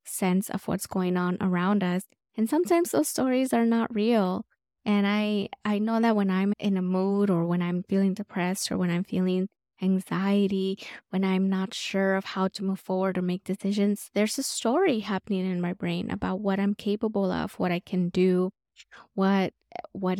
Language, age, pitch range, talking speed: English, 20-39, 190-215 Hz, 190 wpm